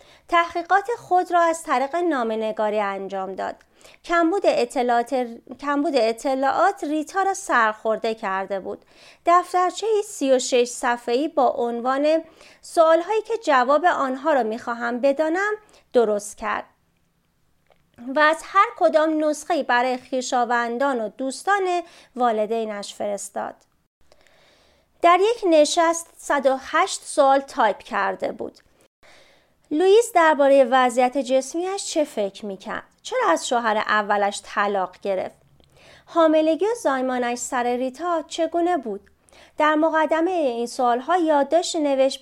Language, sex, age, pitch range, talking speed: Persian, female, 30-49, 240-330 Hz, 105 wpm